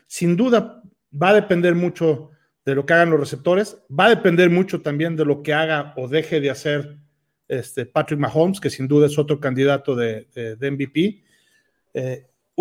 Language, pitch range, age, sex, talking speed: Spanish, 145-175 Hz, 40-59, male, 180 wpm